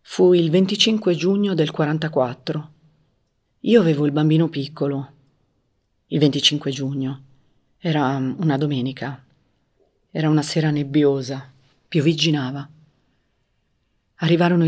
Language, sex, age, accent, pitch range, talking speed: Italian, female, 40-59, native, 125-155 Hz, 95 wpm